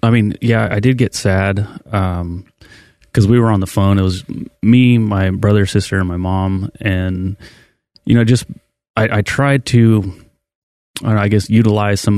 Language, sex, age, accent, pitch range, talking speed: English, male, 30-49, American, 95-110 Hz, 185 wpm